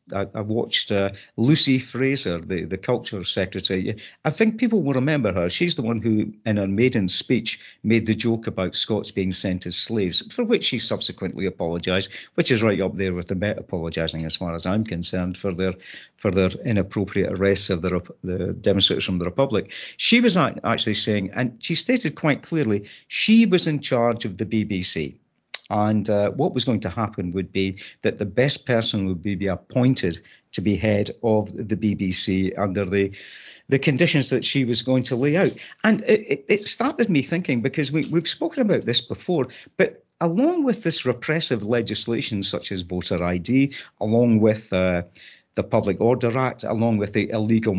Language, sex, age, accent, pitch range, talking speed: English, male, 50-69, British, 100-135 Hz, 185 wpm